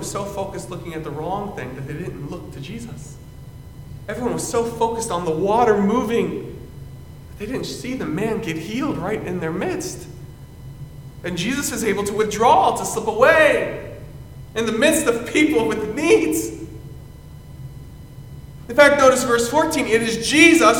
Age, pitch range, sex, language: 40-59, 140-220 Hz, male, English